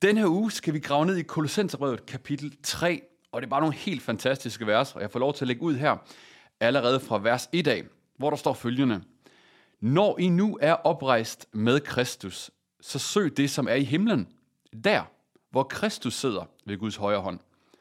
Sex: male